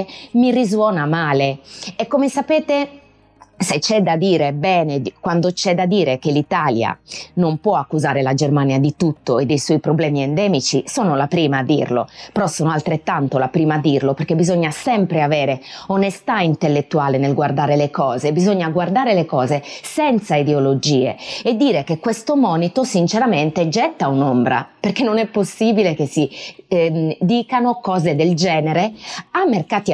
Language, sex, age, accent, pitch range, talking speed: Italian, female, 20-39, native, 150-220 Hz, 155 wpm